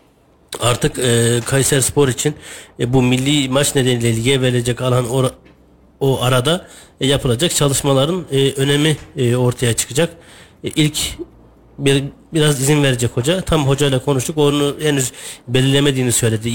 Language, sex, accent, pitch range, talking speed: Turkish, male, native, 120-150 Hz, 135 wpm